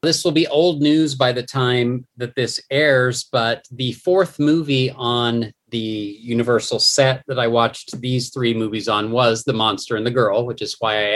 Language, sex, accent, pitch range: English, male, American, 115-135 Hz